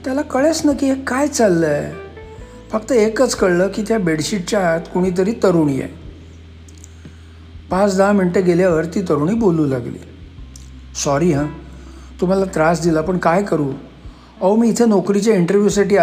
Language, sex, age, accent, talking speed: Marathi, male, 50-69, native, 145 wpm